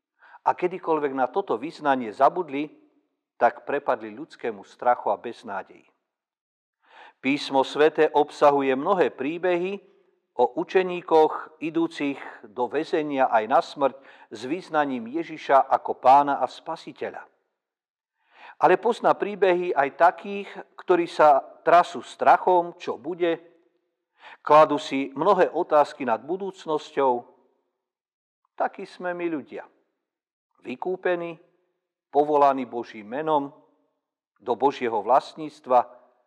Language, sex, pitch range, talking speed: Slovak, male, 145-195 Hz, 100 wpm